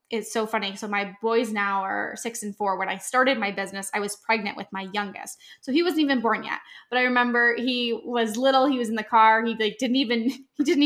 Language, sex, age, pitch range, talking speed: English, female, 10-29, 210-245 Hz, 250 wpm